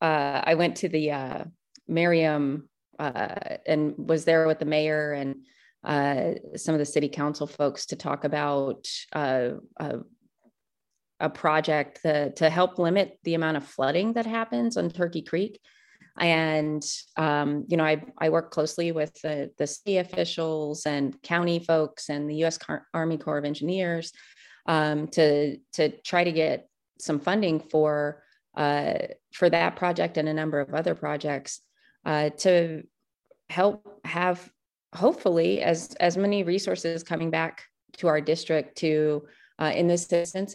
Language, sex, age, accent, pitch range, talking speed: English, female, 30-49, American, 150-175 Hz, 155 wpm